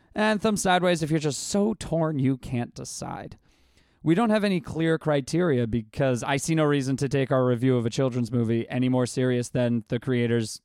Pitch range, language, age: 130-170 Hz, English, 20-39